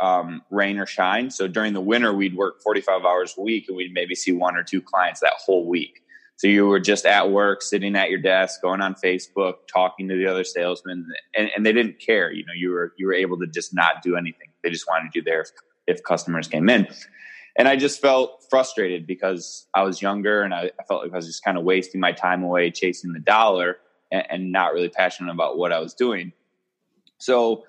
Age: 20-39